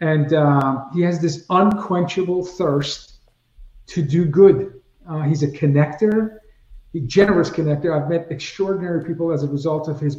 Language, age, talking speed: English, 50-69, 155 wpm